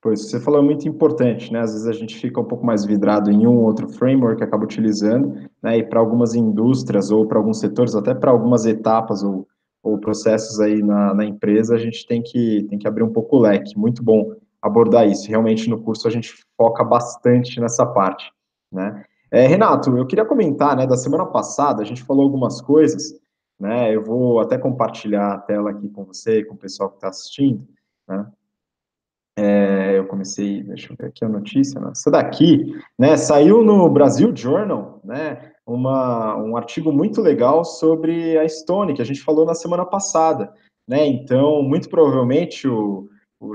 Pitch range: 105-145 Hz